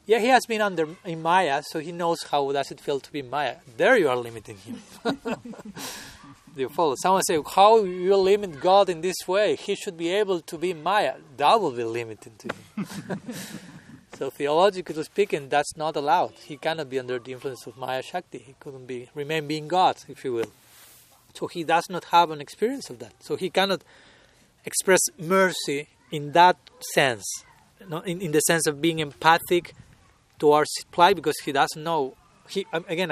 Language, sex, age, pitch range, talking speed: English, male, 40-59, 145-190 Hz, 190 wpm